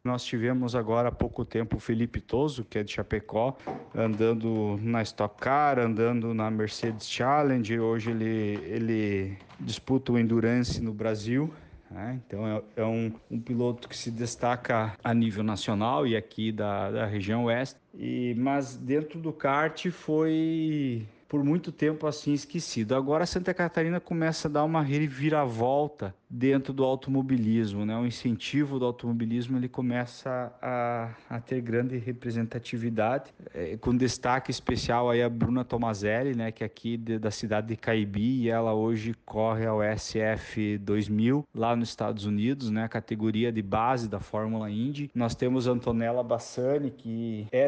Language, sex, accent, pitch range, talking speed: Portuguese, male, Brazilian, 110-130 Hz, 155 wpm